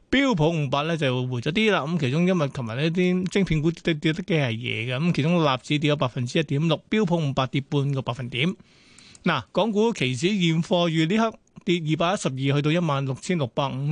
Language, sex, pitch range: Chinese, male, 140-175 Hz